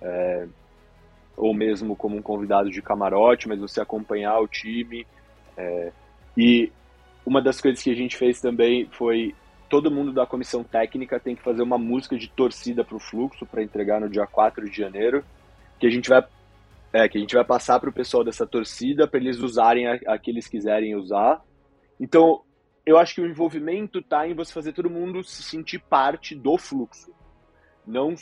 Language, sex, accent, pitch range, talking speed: Portuguese, male, Brazilian, 105-135 Hz, 185 wpm